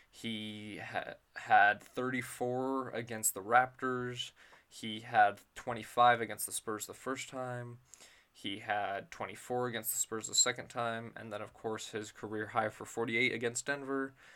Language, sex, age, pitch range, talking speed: English, male, 20-39, 110-125 Hz, 145 wpm